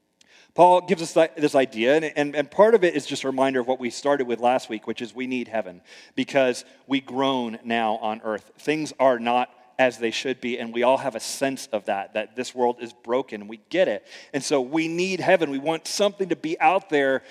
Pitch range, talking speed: 120-150 Hz, 240 wpm